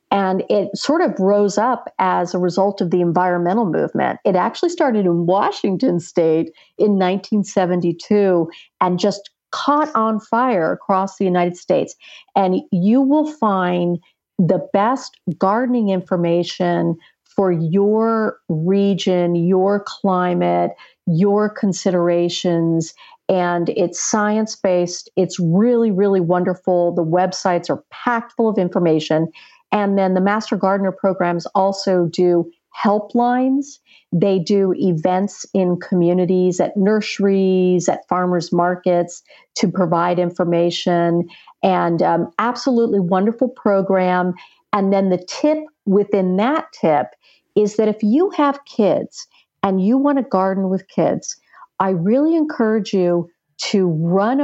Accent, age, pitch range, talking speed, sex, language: American, 50-69, 180-215 Hz, 125 wpm, female, English